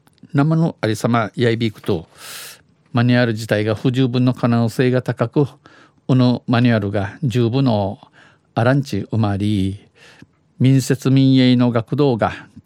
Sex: male